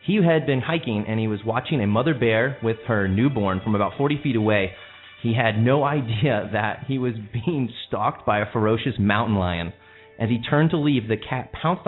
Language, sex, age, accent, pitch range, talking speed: English, male, 30-49, American, 105-135 Hz, 205 wpm